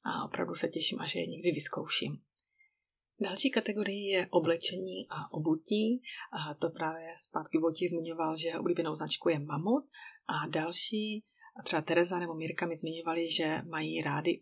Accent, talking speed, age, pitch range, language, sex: native, 155 wpm, 30-49, 165-180 Hz, Czech, female